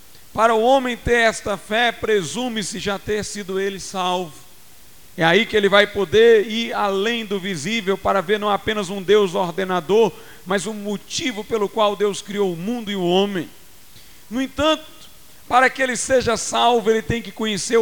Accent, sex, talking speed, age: Brazilian, male, 175 wpm, 50-69